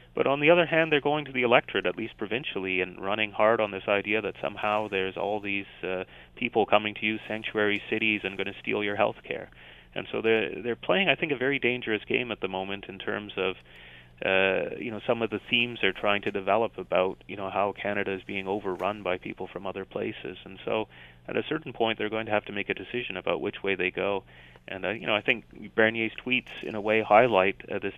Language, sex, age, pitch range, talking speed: English, male, 30-49, 95-110 Hz, 240 wpm